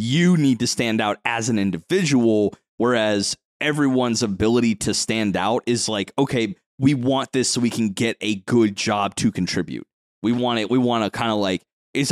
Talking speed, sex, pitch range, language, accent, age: 195 wpm, male, 120-180 Hz, English, American, 30-49